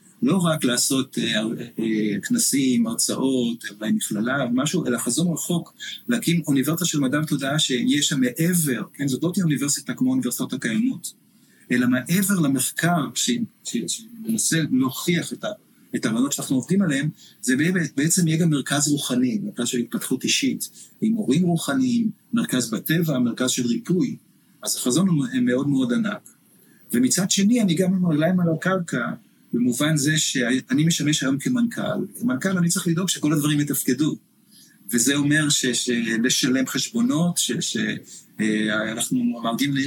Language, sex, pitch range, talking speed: Hebrew, male, 130-215 Hz, 145 wpm